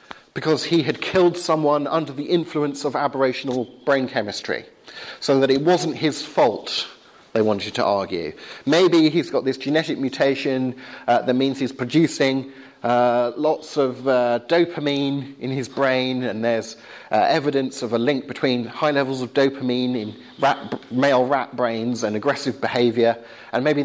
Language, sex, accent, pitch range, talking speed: English, male, British, 125-165 Hz, 155 wpm